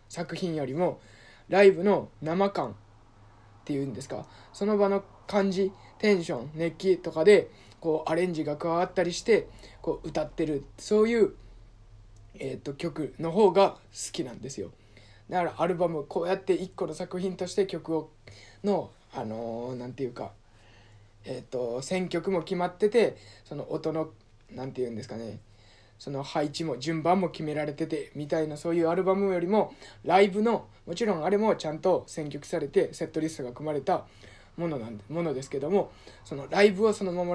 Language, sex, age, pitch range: Japanese, male, 20-39, 125-180 Hz